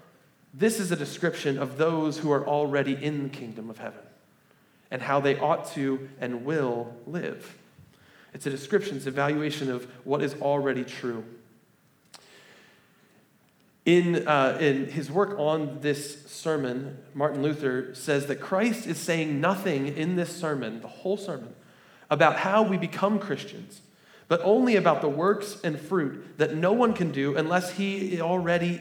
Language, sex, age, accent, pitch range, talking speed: English, male, 30-49, American, 135-175 Hz, 155 wpm